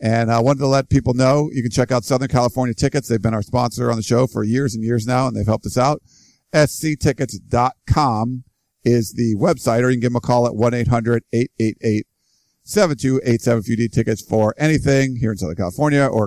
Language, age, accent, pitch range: English, 50-69, American, 110-130 Hz